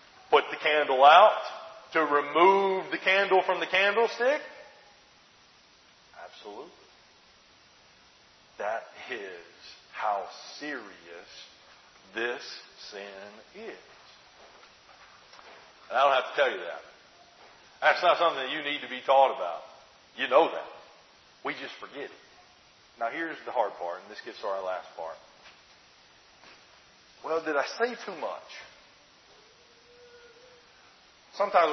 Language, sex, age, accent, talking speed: English, male, 40-59, American, 120 wpm